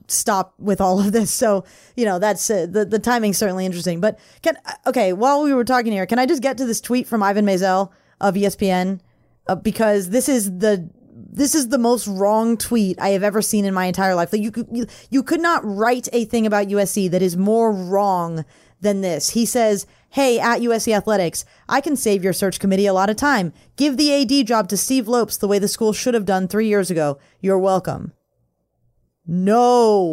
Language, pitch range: English, 195-245 Hz